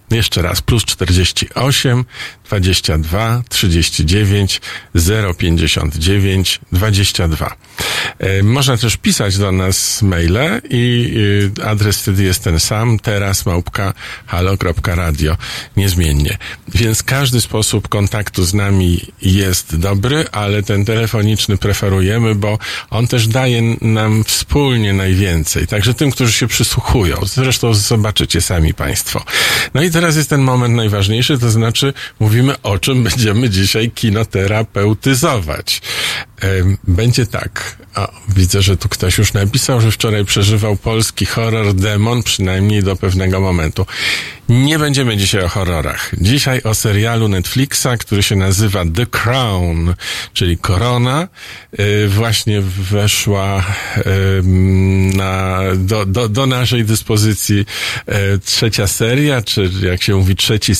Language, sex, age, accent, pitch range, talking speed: Polish, male, 50-69, native, 95-115 Hz, 115 wpm